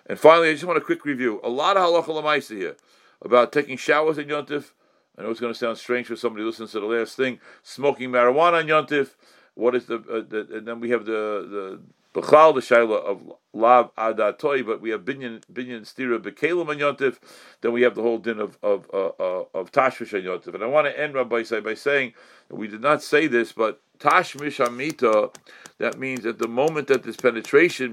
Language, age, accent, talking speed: English, 50-69, American, 215 wpm